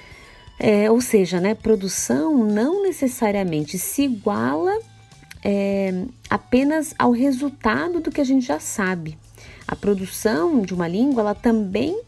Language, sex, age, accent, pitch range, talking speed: Portuguese, female, 30-49, Brazilian, 180-250 Hz, 130 wpm